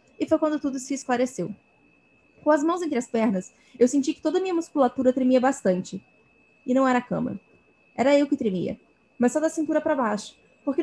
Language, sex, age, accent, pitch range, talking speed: Portuguese, female, 20-39, Brazilian, 215-280 Hz, 205 wpm